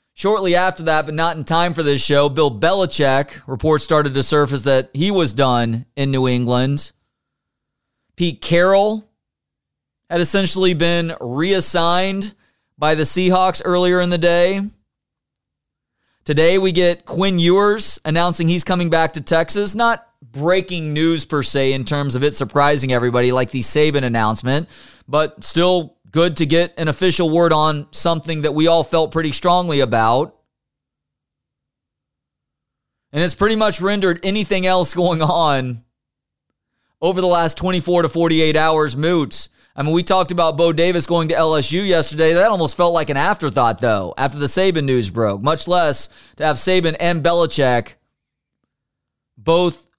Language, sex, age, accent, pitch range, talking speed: English, male, 30-49, American, 140-175 Hz, 150 wpm